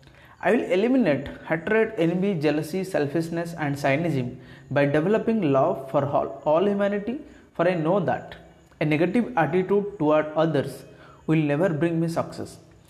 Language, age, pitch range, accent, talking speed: Hindi, 30-49, 140-190 Hz, native, 140 wpm